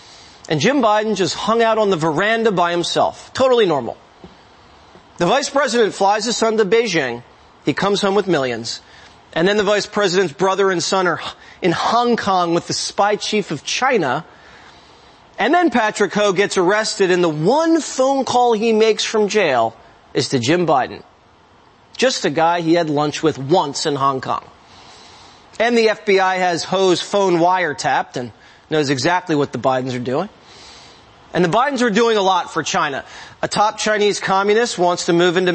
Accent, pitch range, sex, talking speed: American, 165-220 Hz, male, 180 wpm